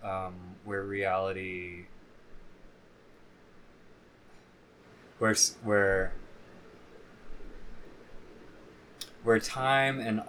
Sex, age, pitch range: male, 20-39, 90-105 Hz